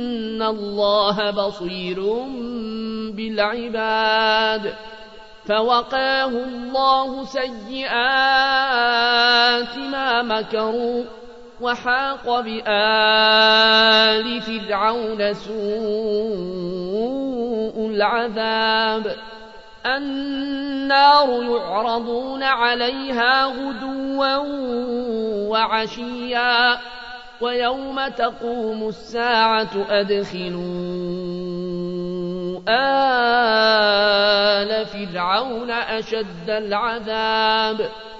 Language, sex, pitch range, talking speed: Arabic, male, 220-245 Hz, 40 wpm